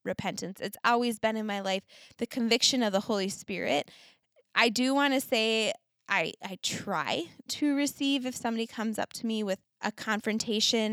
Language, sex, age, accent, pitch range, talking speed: English, female, 20-39, American, 200-230 Hz, 175 wpm